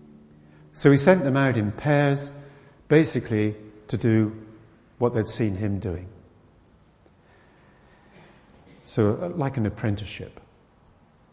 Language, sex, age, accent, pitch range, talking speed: English, male, 50-69, British, 100-130 Hz, 100 wpm